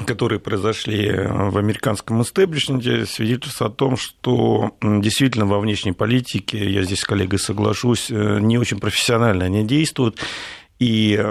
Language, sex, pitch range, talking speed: Russian, male, 100-115 Hz, 125 wpm